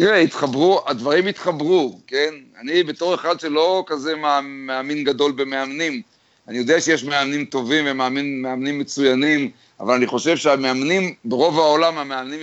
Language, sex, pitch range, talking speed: Hebrew, male, 135-175 Hz, 130 wpm